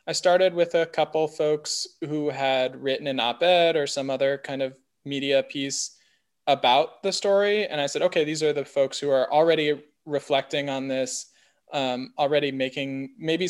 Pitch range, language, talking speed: 130-155 Hz, English, 175 wpm